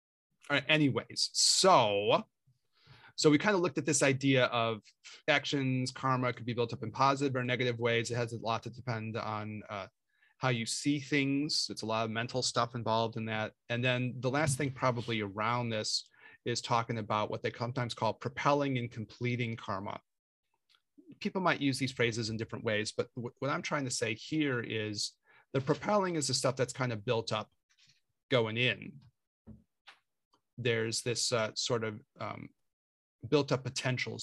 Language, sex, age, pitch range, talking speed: English, male, 30-49, 110-135 Hz, 175 wpm